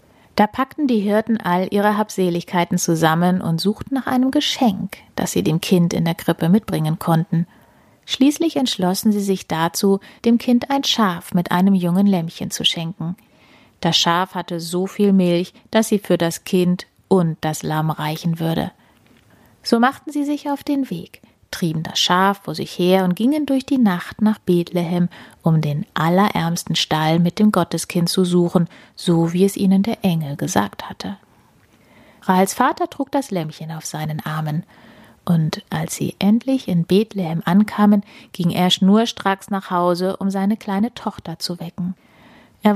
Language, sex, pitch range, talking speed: German, female, 170-215 Hz, 165 wpm